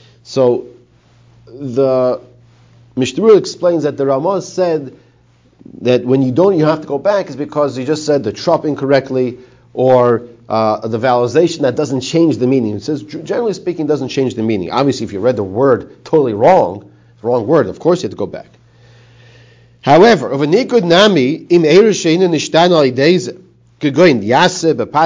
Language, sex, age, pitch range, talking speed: English, male, 40-59, 120-155 Hz, 150 wpm